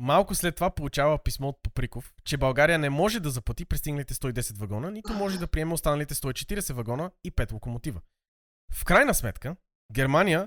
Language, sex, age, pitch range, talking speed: Bulgarian, male, 20-39, 125-180 Hz, 170 wpm